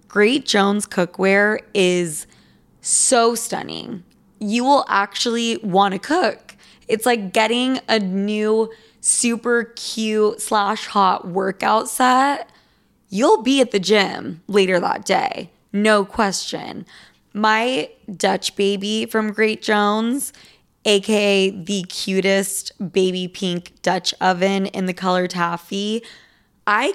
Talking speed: 115 wpm